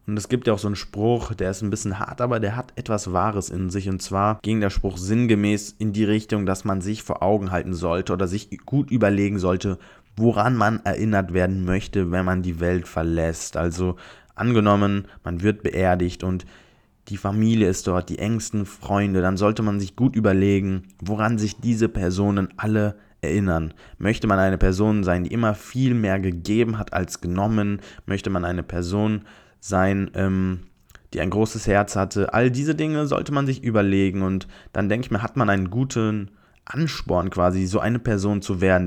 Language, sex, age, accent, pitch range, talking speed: German, male, 20-39, German, 95-110 Hz, 190 wpm